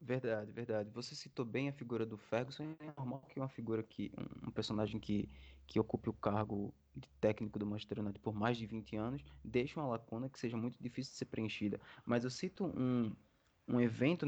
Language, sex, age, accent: Portuguese, male, 20-39, Brazilian